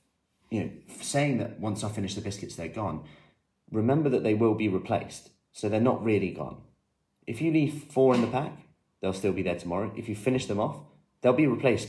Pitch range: 95-125 Hz